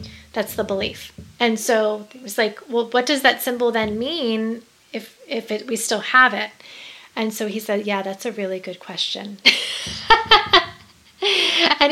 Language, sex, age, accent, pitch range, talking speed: English, female, 30-49, American, 205-250 Hz, 165 wpm